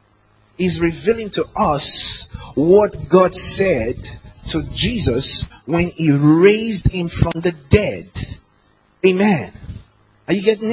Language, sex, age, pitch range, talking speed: English, male, 30-49, 105-175 Hz, 110 wpm